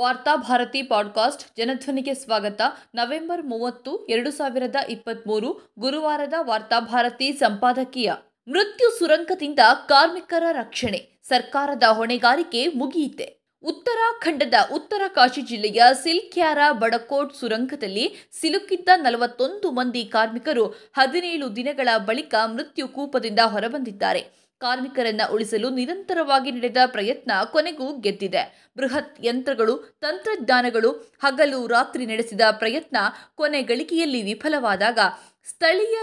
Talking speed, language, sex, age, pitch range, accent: 90 wpm, Kannada, female, 20-39, 235-305 Hz, native